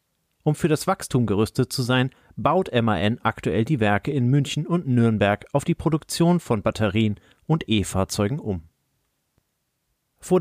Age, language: 40-59, German